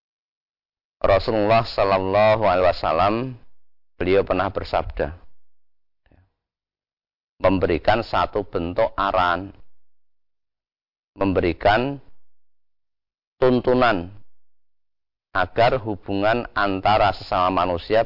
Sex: male